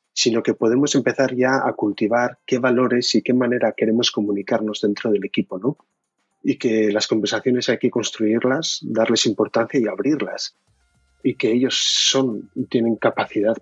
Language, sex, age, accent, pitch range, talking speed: Spanish, male, 30-49, Spanish, 100-120 Hz, 155 wpm